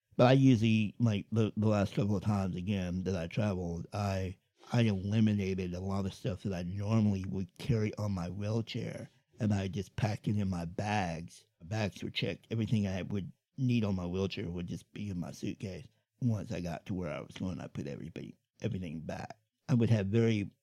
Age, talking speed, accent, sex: 60-79, 205 wpm, American, male